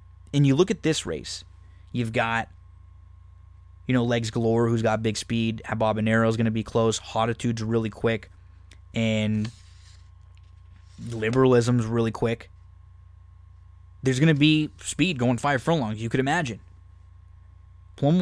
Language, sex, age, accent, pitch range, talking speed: English, male, 20-39, American, 90-125 Hz, 140 wpm